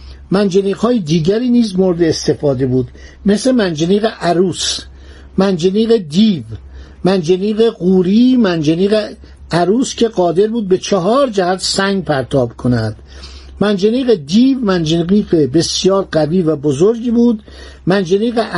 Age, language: 60-79, Persian